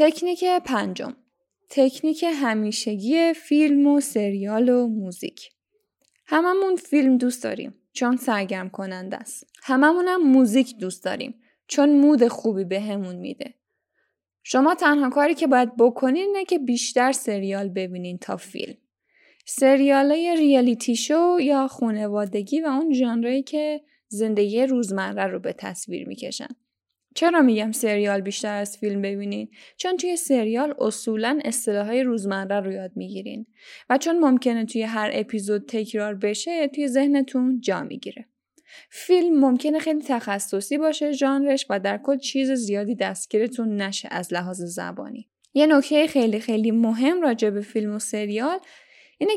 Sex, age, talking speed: female, 10-29, 135 wpm